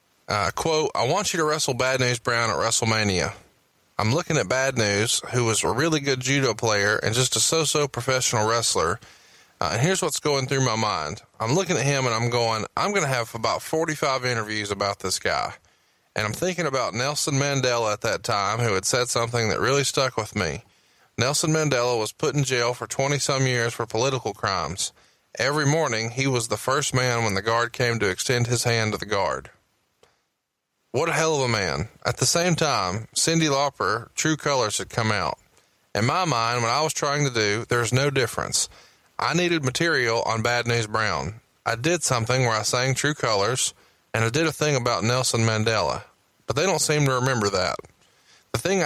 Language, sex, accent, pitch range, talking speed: English, male, American, 115-145 Hz, 205 wpm